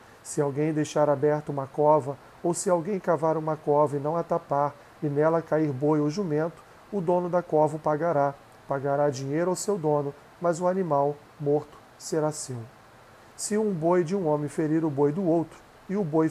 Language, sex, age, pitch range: Portuguese, male, 40-59, 145-175 Hz